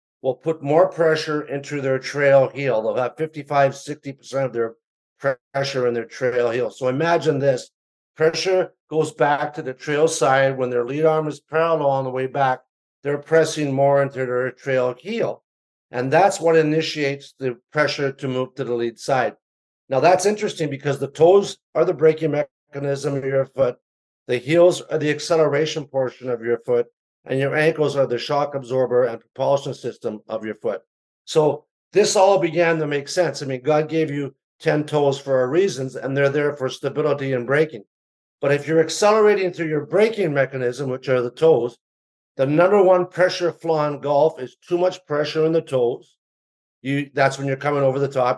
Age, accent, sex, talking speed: 50-69, American, male, 185 wpm